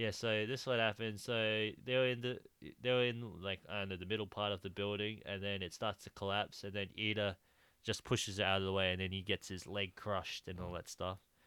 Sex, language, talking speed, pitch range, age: male, English, 240 wpm, 95-110 Hz, 20-39